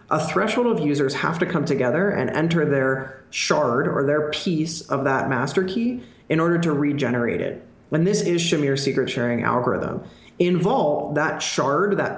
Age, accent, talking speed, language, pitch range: 20-39, American, 175 wpm, English, 135-165 Hz